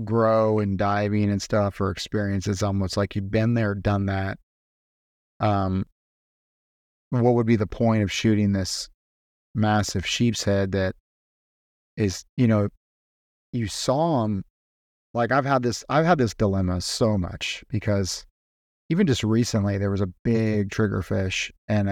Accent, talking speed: American, 150 wpm